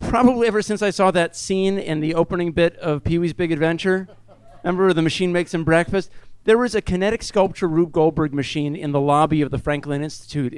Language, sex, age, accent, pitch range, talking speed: English, male, 40-59, American, 145-185 Hz, 205 wpm